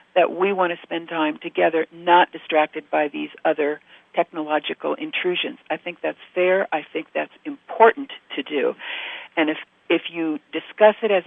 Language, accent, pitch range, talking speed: English, American, 155-195 Hz, 165 wpm